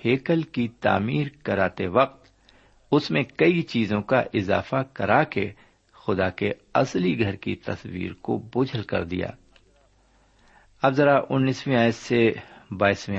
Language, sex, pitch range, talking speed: Urdu, male, 100-130 Hz, 130 wpm